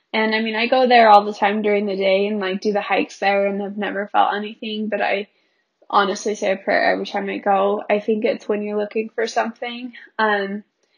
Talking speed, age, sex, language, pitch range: 230 wpm, 20-39, female, English, 200-230 Hz